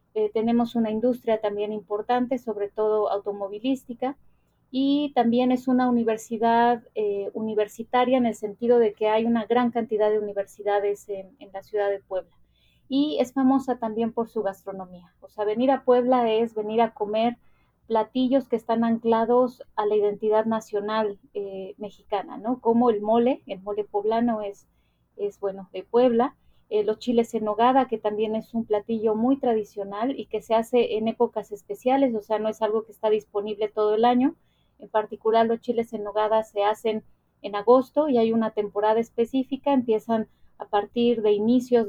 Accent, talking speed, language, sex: Mexican, 175 wpm, Spanish, female